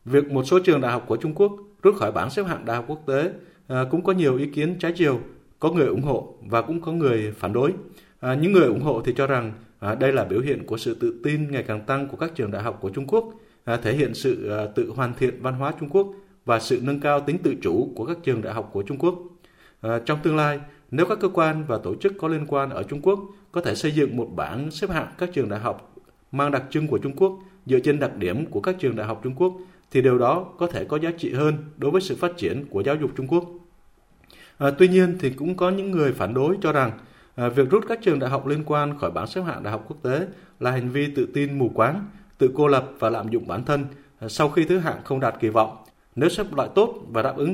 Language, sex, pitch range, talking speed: Vietnamese, male, 130-175 Hz, 265 wpm